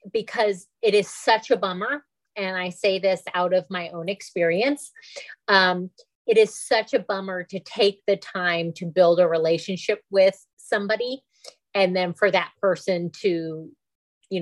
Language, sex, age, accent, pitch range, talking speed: English, female, 30-49, American, 165-200 Hz, 160 wpm